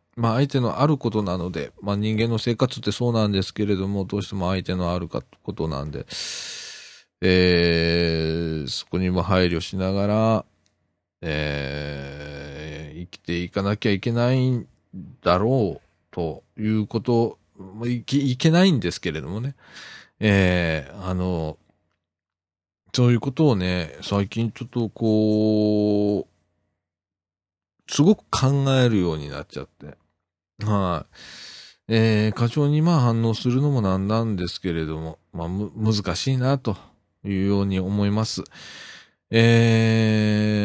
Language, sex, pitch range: Japanese, male, 85-115 Hz